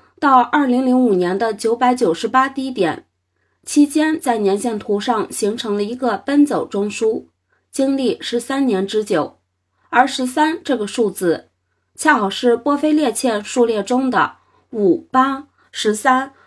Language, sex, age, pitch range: Chinese, female, 20-39, 205-270 Hz